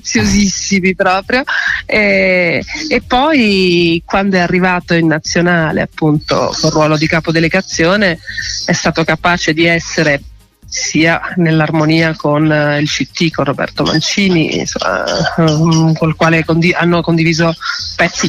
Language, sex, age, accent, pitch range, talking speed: Italian, female, 40-59, native, 160-185 Hz, 110 wpm